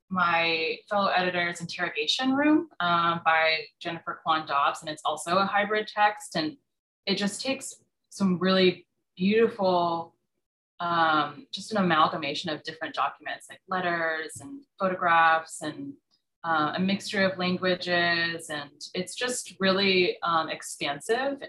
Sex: female